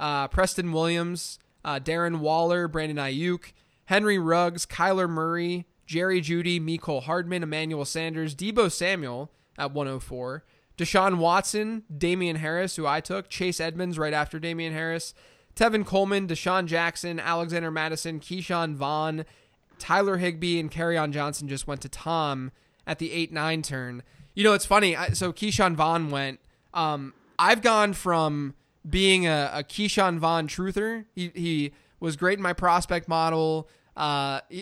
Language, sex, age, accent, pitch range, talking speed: English, male, 20-39, American, 145-180 Hz, 145 wpm